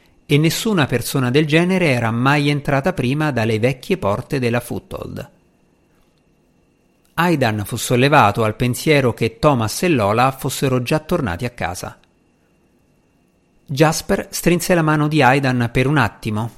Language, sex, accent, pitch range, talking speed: Italian, male, native, 115-155 Hz, 135 wpm